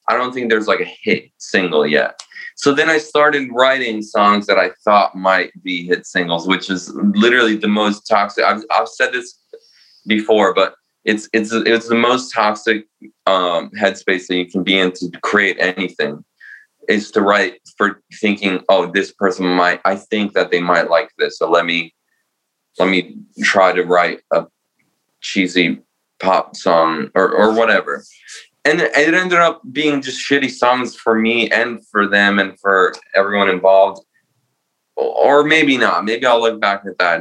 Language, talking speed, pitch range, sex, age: English, 175 wpm, 95-120 Hz, male, 20-39